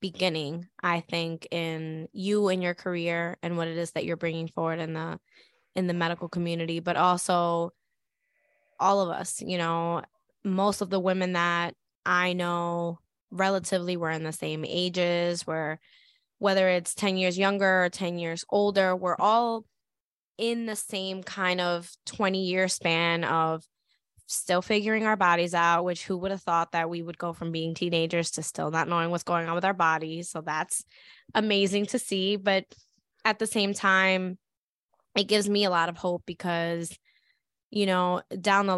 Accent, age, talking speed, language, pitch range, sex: American, 10-29, 175 wpm, English, 170-195 Hz, female